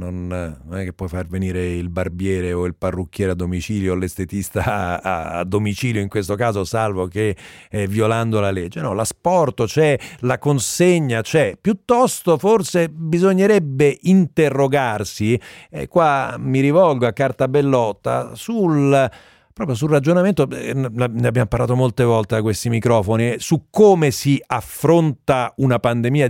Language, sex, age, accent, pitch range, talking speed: Italian, male, 40-59, native, 115-150 Hz, 145 wpm